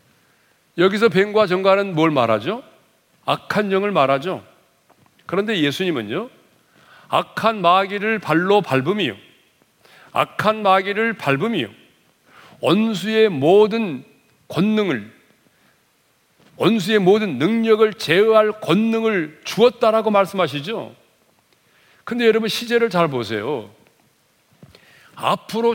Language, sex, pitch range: Korean, male, 185-225 Hz